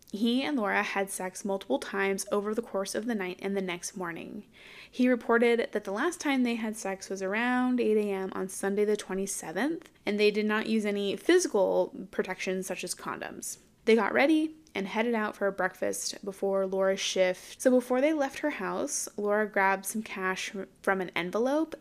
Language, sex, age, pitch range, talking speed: English, female, 20-39, 190-240 Hz, 190 wpm